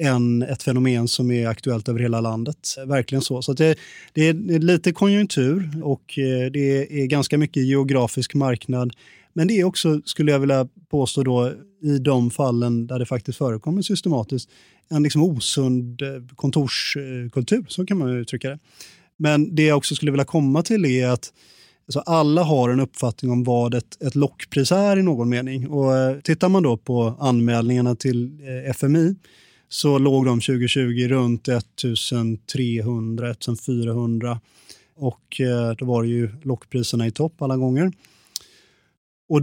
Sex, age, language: male, 30-49, Swedish